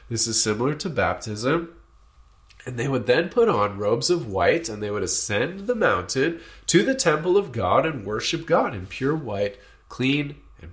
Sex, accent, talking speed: male, American, 185 wpm